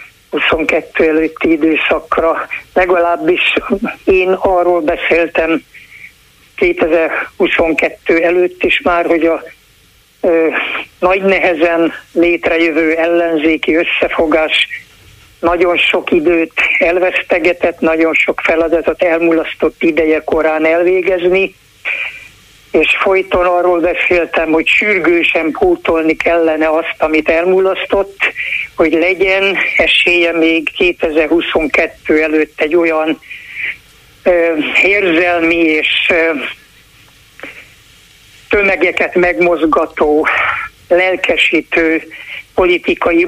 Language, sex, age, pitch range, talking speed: Hungarian, male, 60-79, 160-185 Hz, 80 wpm